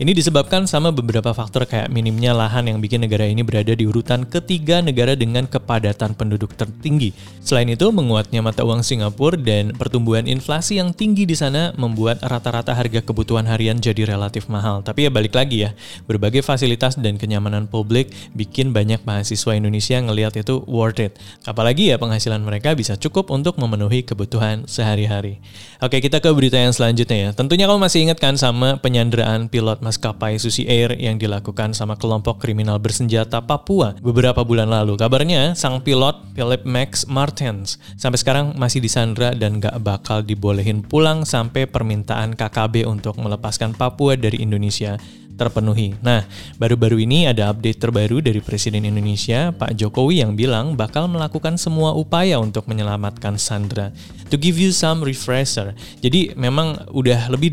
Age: 20-39